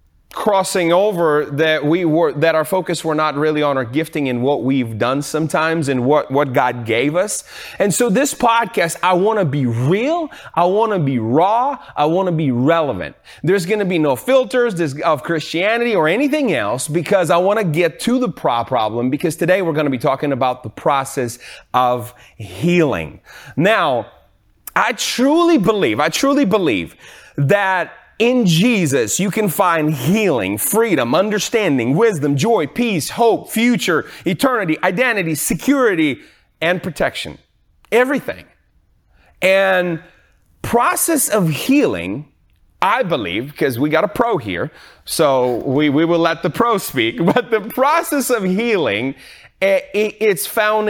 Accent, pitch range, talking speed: American, 140-215 Hz, 155 wpm